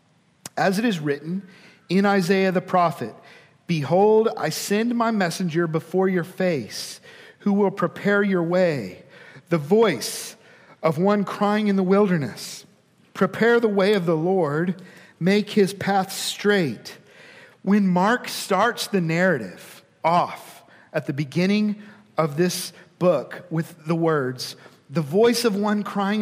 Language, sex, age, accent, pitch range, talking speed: English, male, 50-69, American, 175-210 Hz, 135 wpm